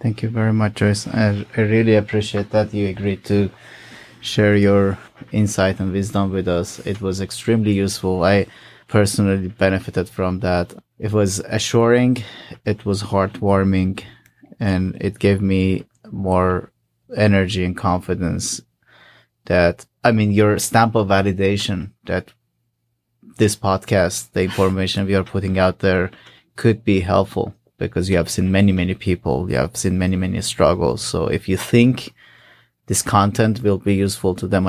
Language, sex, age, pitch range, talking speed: English, male, 20-39, 95-110 Hz, 150 wpm